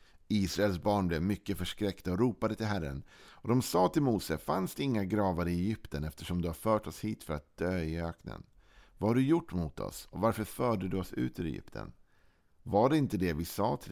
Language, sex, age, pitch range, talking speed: Swedish, male, 50-69, 80-105 Hz, 225 wpm